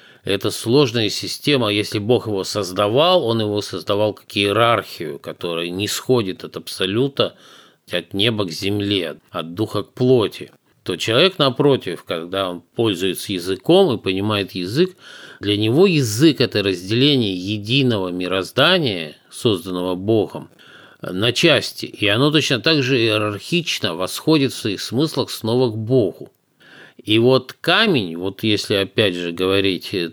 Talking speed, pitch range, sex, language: 135 wpm, 95-125 Hz, male, Russian